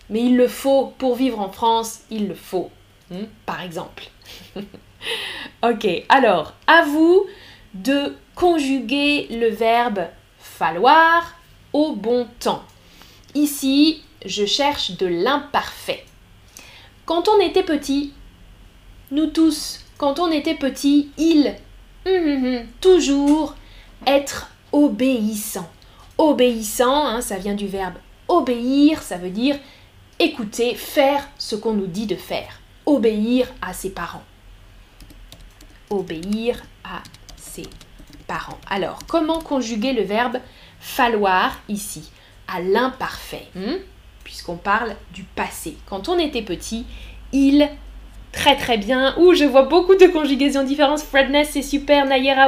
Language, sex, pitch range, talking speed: French, female, 225-295 Hz, 120 wpm